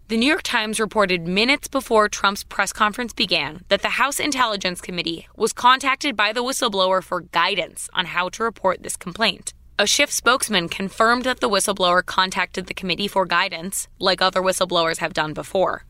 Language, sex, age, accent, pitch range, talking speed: English, female, 20-39, American, 180-230 Hz, 175 wpm